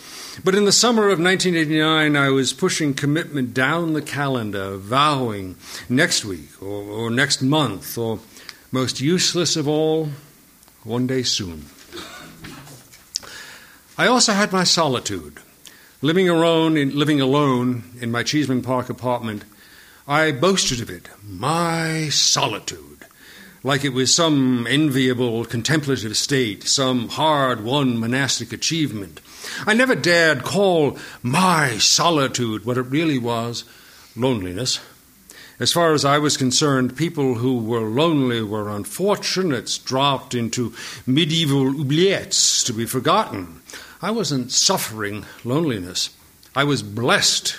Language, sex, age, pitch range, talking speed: English, male, 50-69, 115-155 Hz, 120 wpm